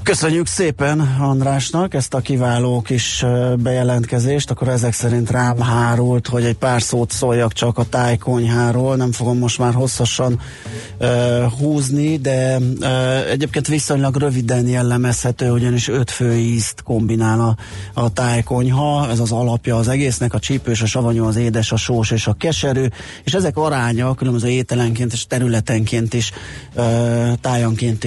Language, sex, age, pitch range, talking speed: Hungarian, male, 30-49, 115-130 Hz, 145 wpm